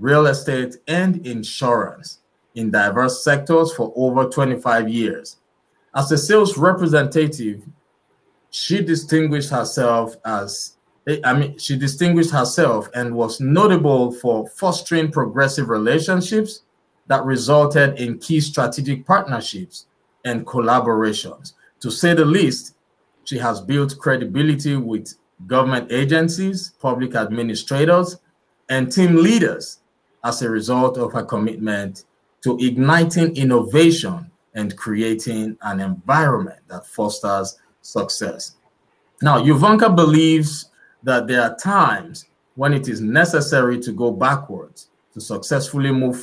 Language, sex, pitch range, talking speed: English, male, 120-160 Hz, 115 wpm